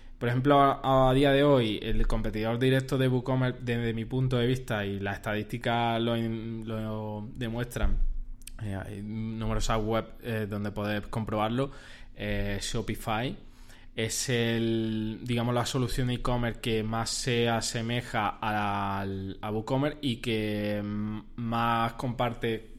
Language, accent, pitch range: Spanish, Spanish, 110-130 Hz